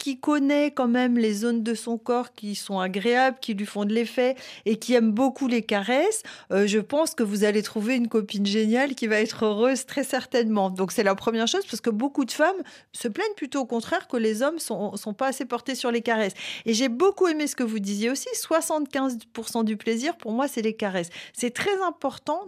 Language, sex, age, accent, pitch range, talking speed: French, female, 40-59, French, 220-285 Hz, 225 wpm